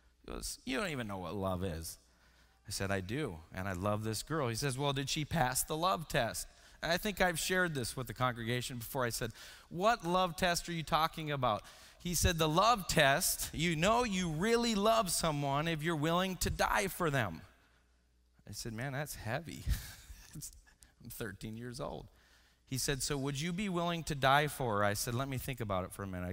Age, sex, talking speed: 30-49, male, 210 wpm